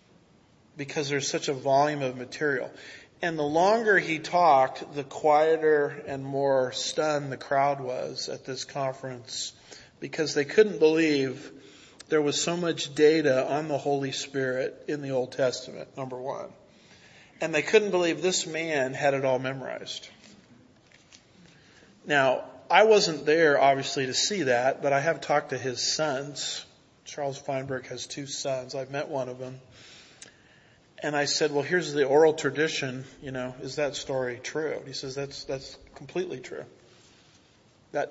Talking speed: 155 wpm